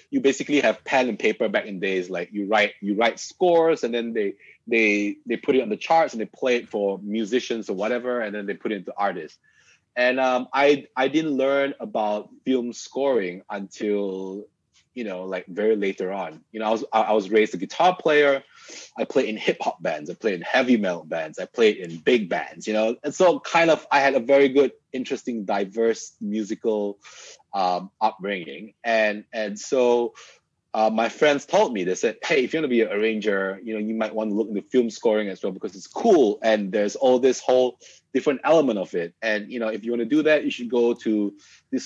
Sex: male